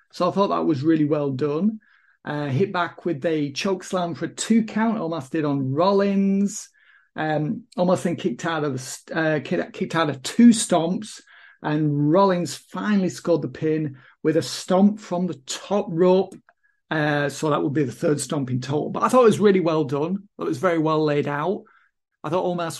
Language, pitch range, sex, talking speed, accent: English, 155-195 Hz, male, 195 wpm, British